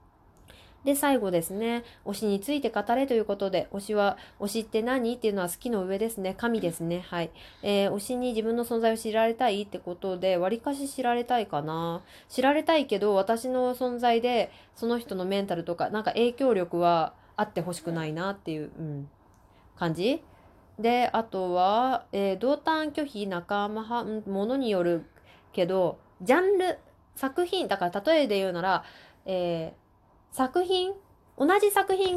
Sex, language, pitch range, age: female, Japanese, 180-250 Hz, 20-39